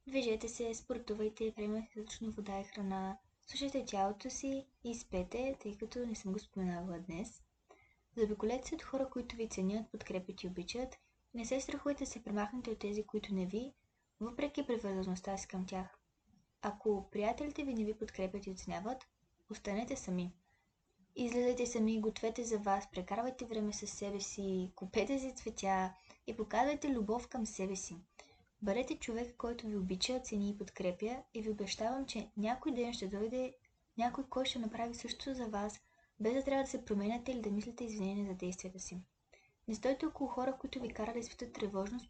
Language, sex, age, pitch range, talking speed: Bulgarian, female, 20-39, 200-250 Hz, 170 wpm